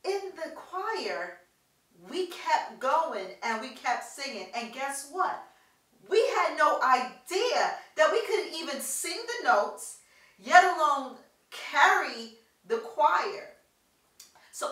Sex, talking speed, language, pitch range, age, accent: female, 115 wpm, English, 220-330 Hz, 40-59, American